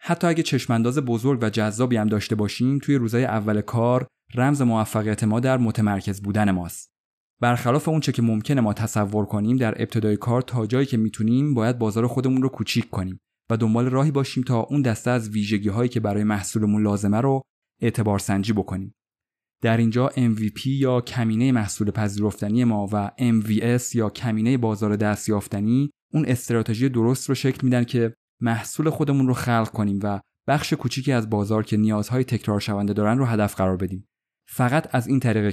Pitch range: 105-125 Hz